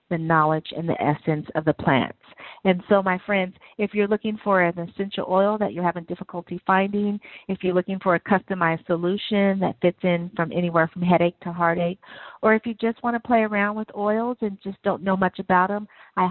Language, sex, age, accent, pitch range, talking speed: English, female, 40-59, American, 170-205 Hz, 215 wpm